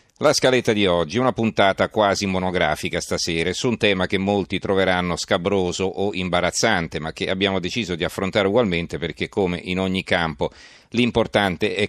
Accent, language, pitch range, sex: native, Italian, 85-100 Hz, male